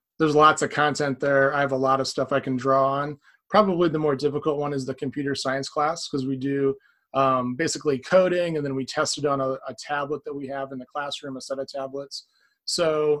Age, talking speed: 30-49, 230 wpm